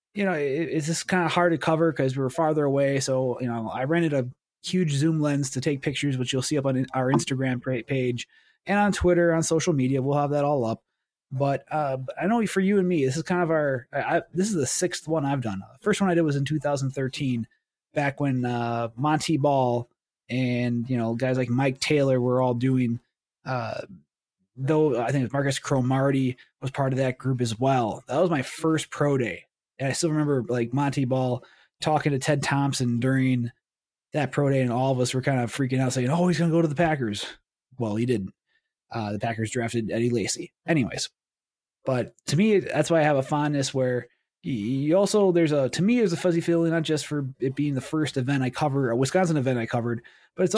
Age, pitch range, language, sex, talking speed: 20-39, 125-160 Hz, English, male, 225 wpm